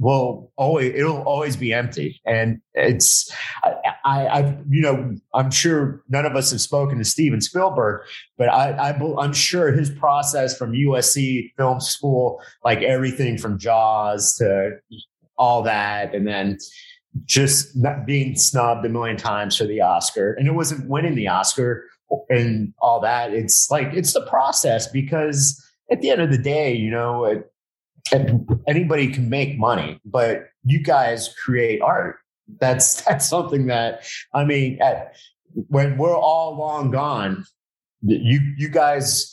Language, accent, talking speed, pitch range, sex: English, American, 150 wpm, 115-145 Hz, male